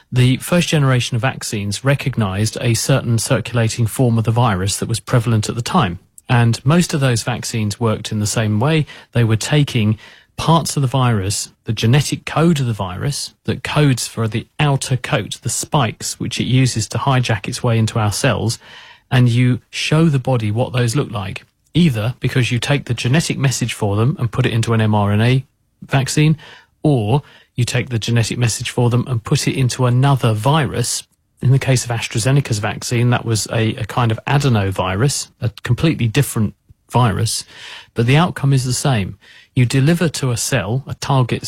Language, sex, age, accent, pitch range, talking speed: English, male, 40-59, British, 110-135 Hz, 185 wpm